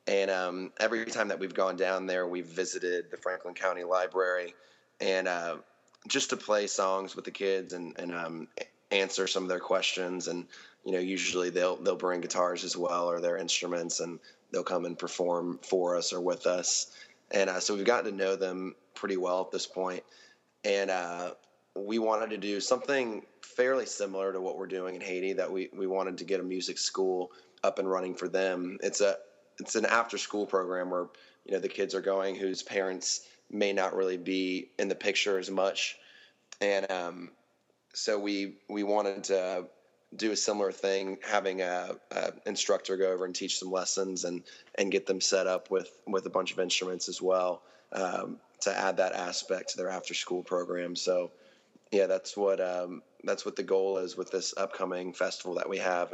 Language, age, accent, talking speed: English, 20-39, American, 195 wpm